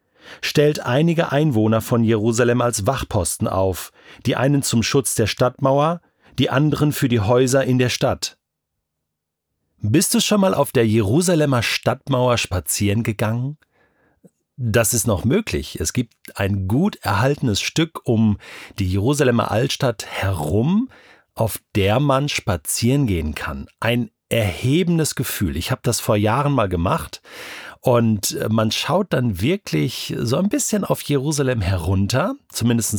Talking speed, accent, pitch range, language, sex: 135 wpm, German, 105-140 Hz, German, male